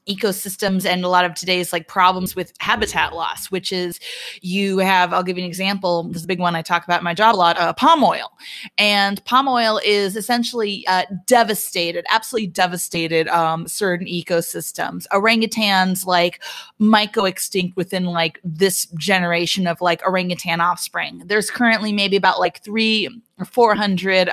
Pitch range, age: 180-215 Hz, 30-49